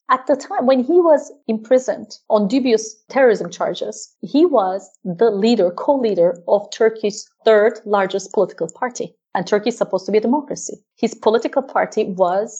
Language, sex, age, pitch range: English, female, 30-49, 195-250 Hz